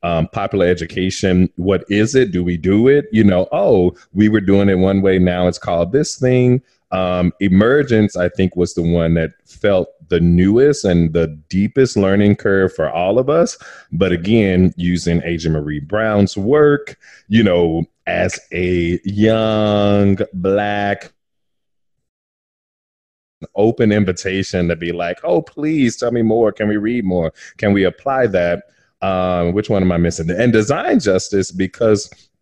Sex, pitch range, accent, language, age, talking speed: male, 85-105 Hz, American, English, 30-49, 155 wpm